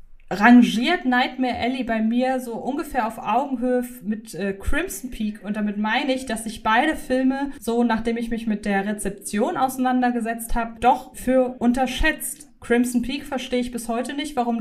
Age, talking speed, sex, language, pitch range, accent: 20-39, 170 wpm, female, German, 205-250 Hz, German